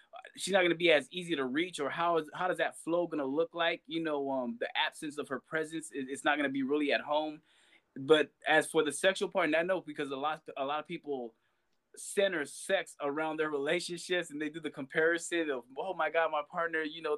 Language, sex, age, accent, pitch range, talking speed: English, male, 20-39, American, 145-175 Hz, 235 wpm